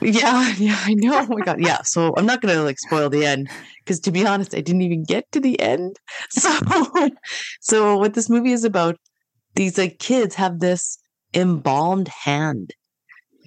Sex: female